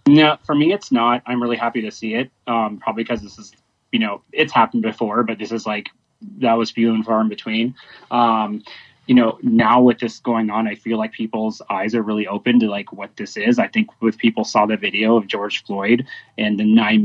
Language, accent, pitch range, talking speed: English, American, 110-125 Hz, 230 wpm